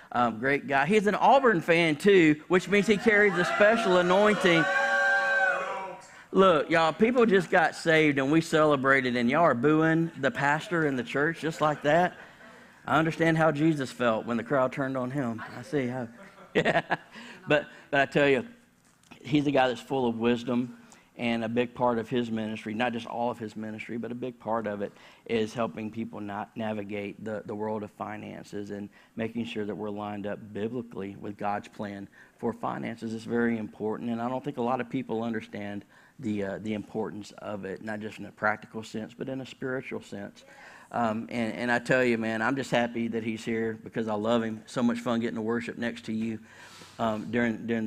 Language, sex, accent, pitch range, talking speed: English, male, American, 110-150 Hz, 205 wpm